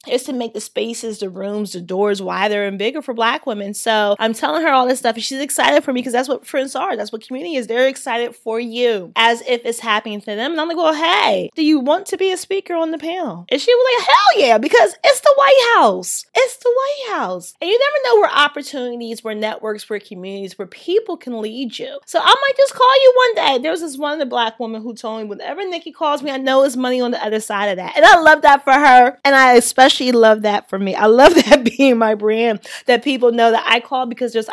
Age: 20-39